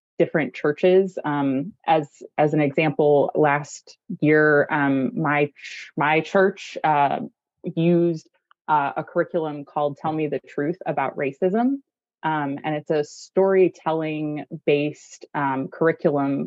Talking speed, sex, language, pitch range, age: 125 wpm, female, English, 145-170 Hz, 20-39